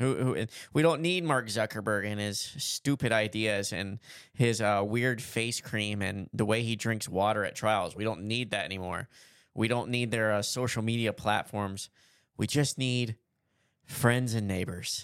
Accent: American